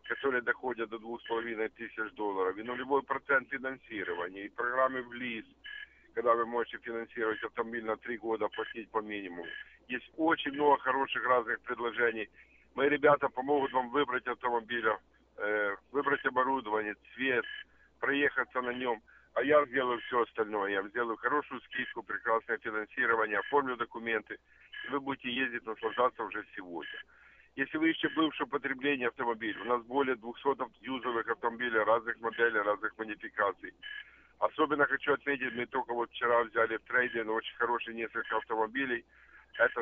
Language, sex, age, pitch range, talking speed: Russian, male, 50-69, 115-145 Hz, 145 wpm